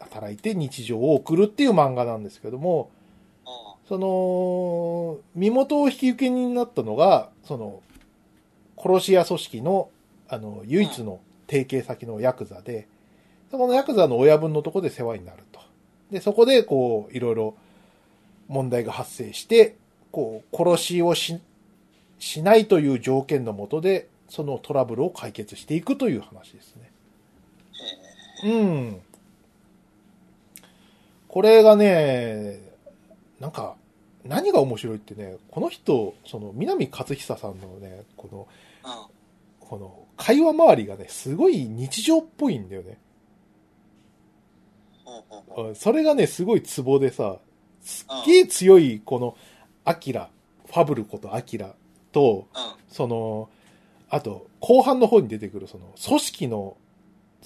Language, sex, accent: Japanese, male, native